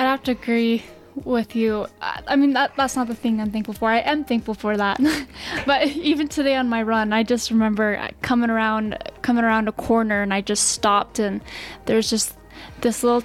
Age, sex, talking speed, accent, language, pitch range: 10-29, female, 205 wpm, American, English, 215-255 Hz